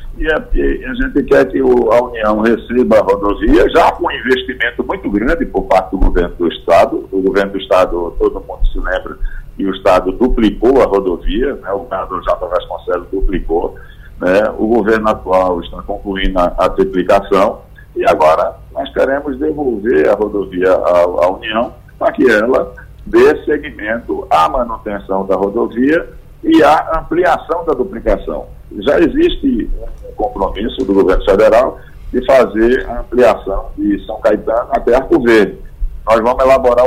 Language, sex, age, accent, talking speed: Portuguese, male, 60-79, Brazilian, 160 wpm